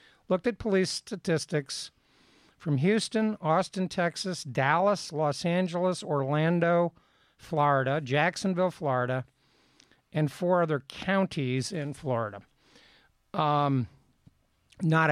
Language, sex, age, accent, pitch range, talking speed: English, male, 50-69, American, 135-175 Hz, 90 wpm